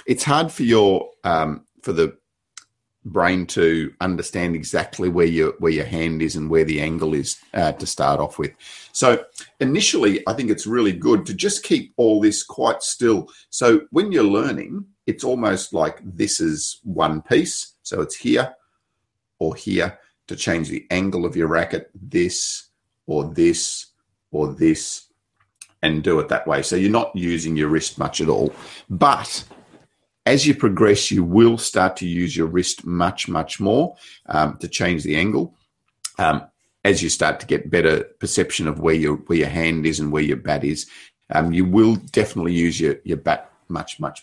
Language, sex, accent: English, male, Australian